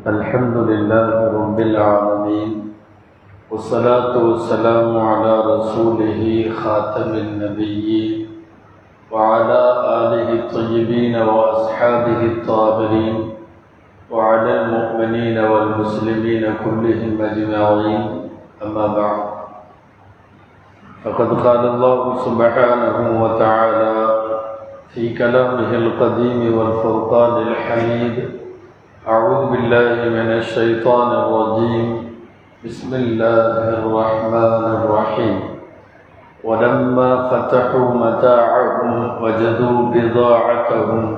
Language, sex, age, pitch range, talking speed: Tamil, male, 50-69, 110-120 Hz, 70 wpm